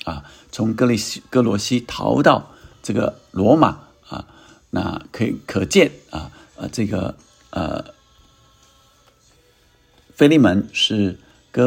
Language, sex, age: Chinese, male, 50-69